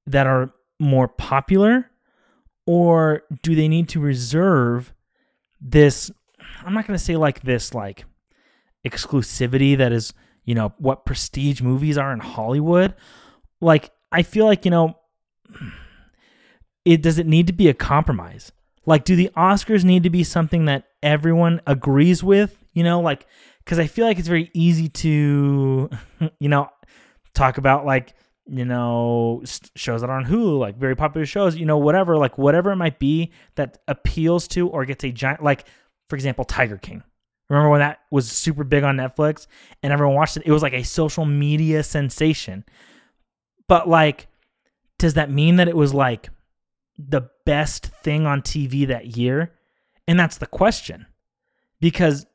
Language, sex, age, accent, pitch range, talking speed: English, male, 20-39, American, 135-170 Hz, 165 wpm